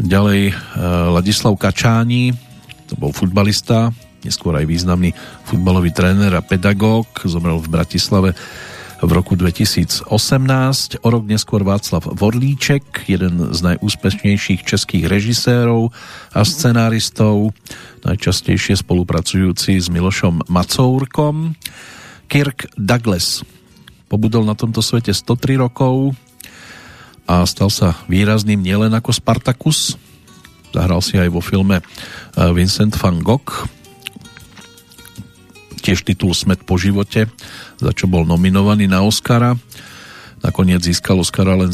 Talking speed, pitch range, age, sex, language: 105 wpm, 90-115 Hz, 40-59, male, Slovak